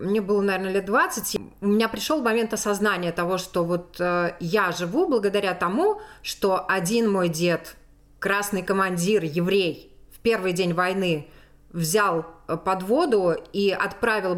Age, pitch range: 20-39, 170-205 Hz